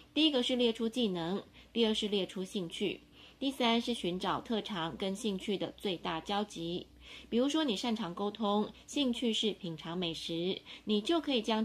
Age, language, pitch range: 20-39, Chinese, 180-230 Hz